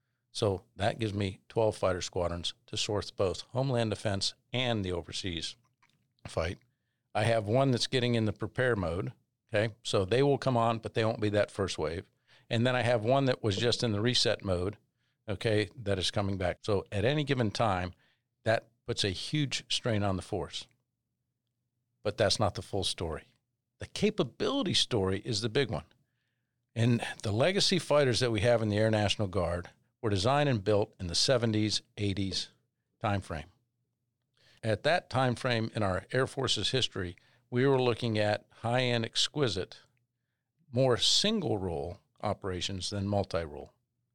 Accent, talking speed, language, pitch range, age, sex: American, 165 wpm, English, 105-125 Hz, 50-69, male